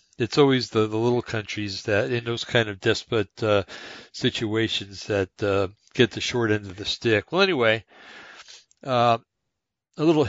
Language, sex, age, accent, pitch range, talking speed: English, male, 60-79, American, 105-120 Hz, 165 wpm